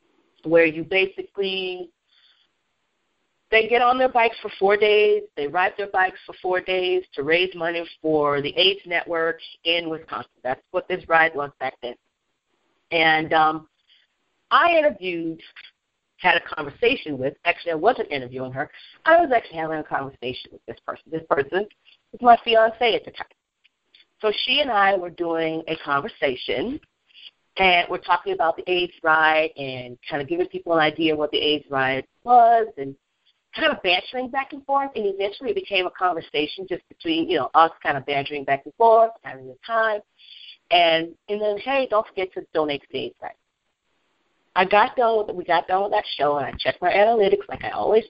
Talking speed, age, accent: 185 wpm, 40-59, American